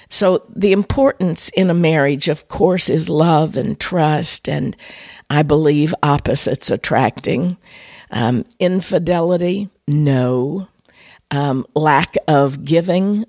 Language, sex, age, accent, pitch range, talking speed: English, female, 50-69, American, 135-170 Hz, 110 wpm